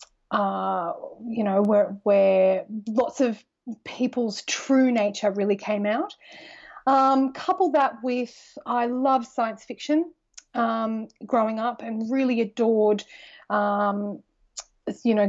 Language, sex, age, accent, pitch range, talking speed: English, female, 30-49, Australian, 210-265 Hz, 120 wpm